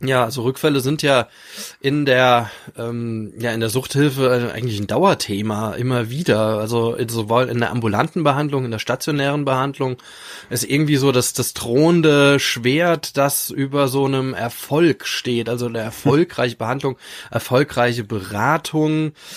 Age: 20-39